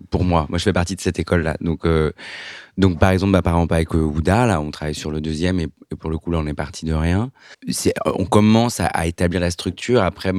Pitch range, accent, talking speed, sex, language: 80-95 Hz, French, 265 wpm, male, French